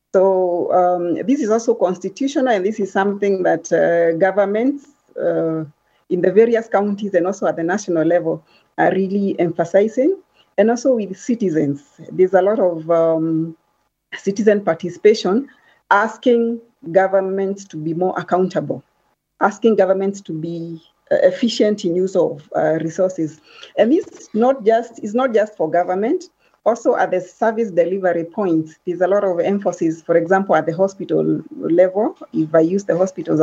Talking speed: 155 wpm